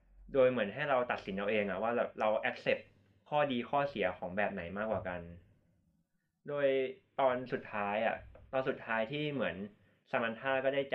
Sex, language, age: male, Thai, 20-39